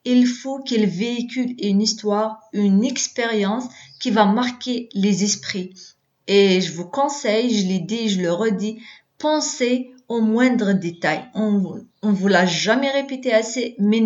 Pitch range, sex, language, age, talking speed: 210-260 Hz, female, Arabic, 30-49, 150 wpm